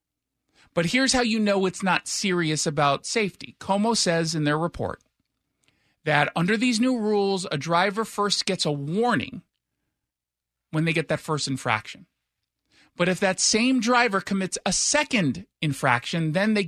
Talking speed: 155 wpm